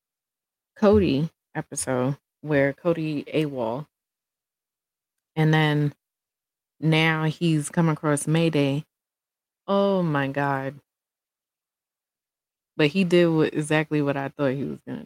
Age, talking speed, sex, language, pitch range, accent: 20-39, 100 wpm, female, English, 145-180 Hz, American